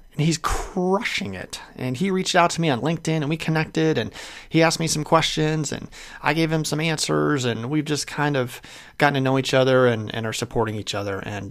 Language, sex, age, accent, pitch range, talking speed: English, male, 30-49, American, 125-155 Hz, 225 wpm